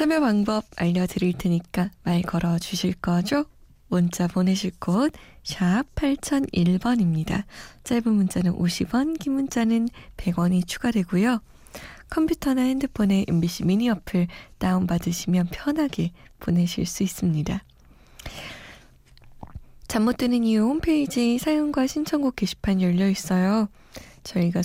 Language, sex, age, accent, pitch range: Korean, female, 20-39, native, 180-240 Hz